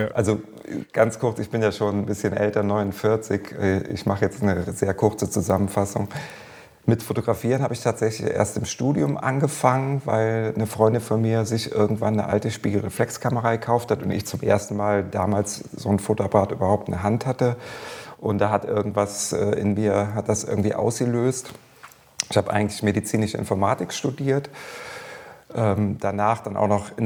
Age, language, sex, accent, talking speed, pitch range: 30-49, German, male, German, 165 wpm, 100-115 Hz